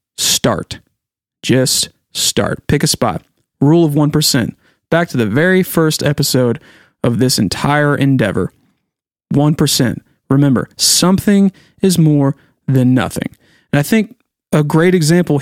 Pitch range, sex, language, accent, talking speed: 135-170 Hz, male, English, American, 125 wpm